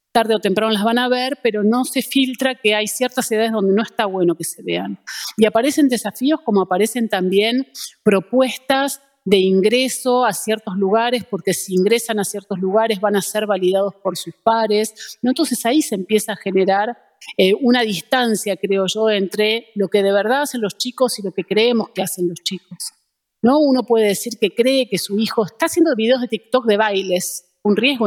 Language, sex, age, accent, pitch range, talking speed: Spanish, female, 40-59, Argentinian, 195-240 Hz, 190 wpm